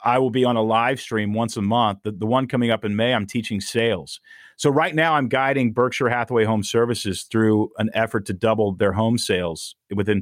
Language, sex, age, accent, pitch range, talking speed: English, male, 40-59, American, 105-125 Hz, 225 wpm